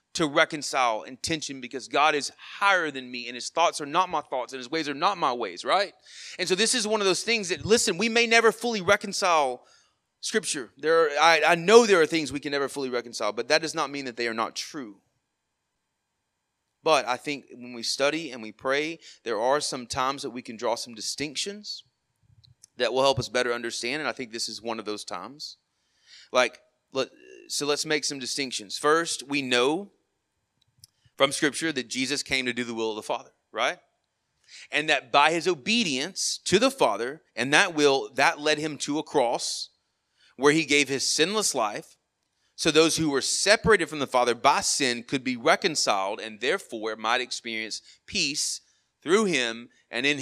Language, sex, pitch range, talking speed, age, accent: English, male, 125-170 Hz, 195 wpm, 30-49, American